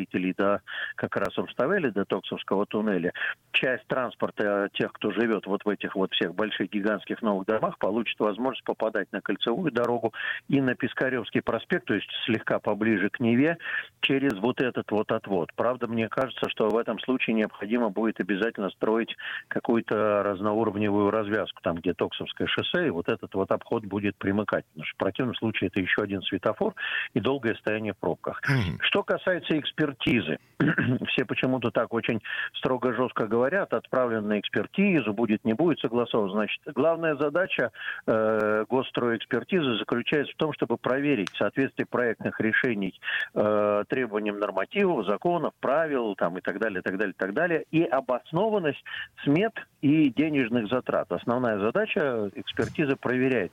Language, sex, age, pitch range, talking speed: Russian, male, 50-69, 105-135 Hz, 150 wpm